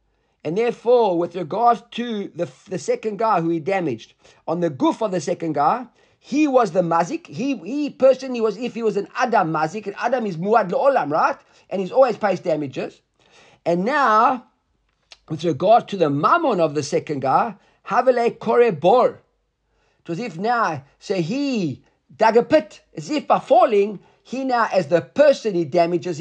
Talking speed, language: 175 wpm, English